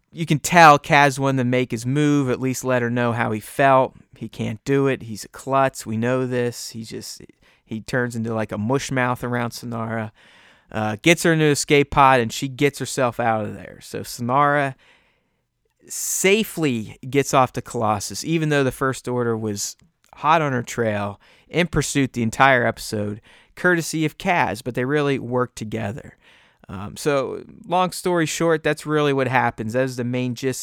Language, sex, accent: English, male, American